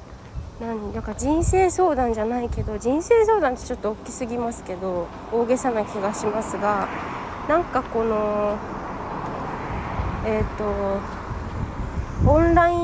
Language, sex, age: Japanese, female, 20-39